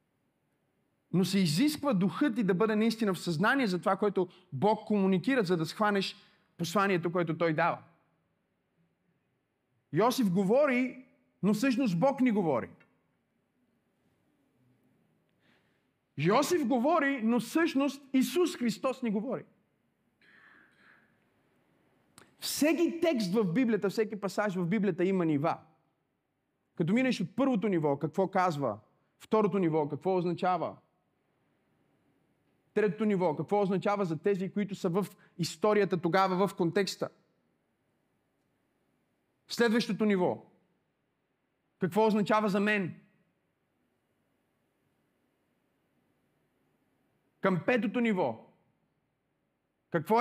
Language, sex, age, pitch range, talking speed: Bulgarian, male, 30-49, 180-230 Hz, 95 wpm